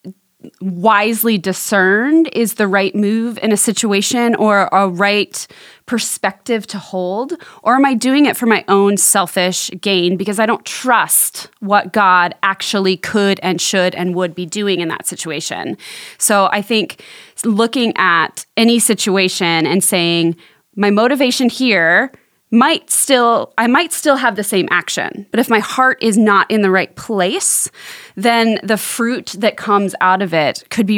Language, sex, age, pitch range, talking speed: English, female, 20-39, 185-230 Hz, 160 wpm